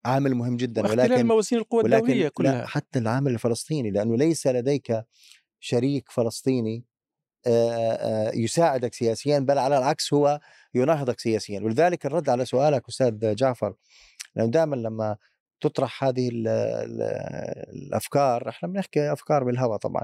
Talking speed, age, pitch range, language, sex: 115 wpm, 30-49, 110-135 Hz, Arabic, male